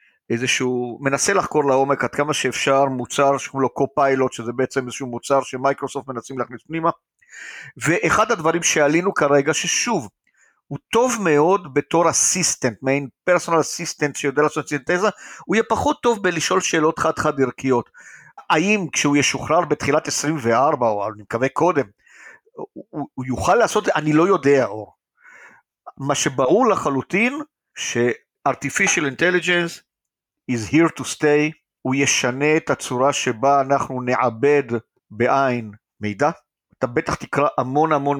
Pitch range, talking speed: 125-155 Hz, 130 wpm